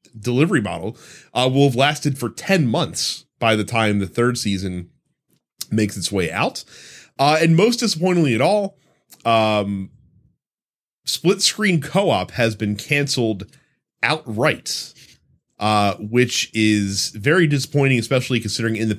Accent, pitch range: American, 100-135 Hz